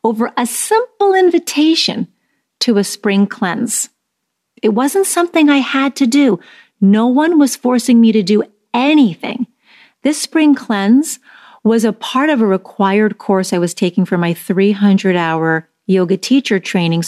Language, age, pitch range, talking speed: English, 40-59, 190-245 Hz, 150 wpm